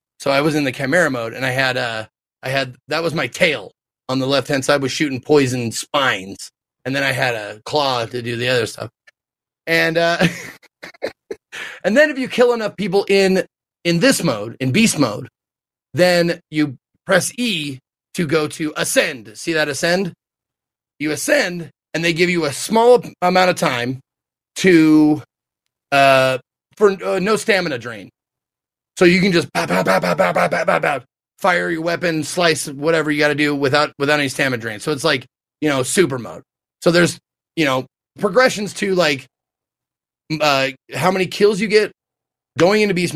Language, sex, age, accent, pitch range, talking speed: English, male, 30-49, American, 130-175 Hz, 180 wpm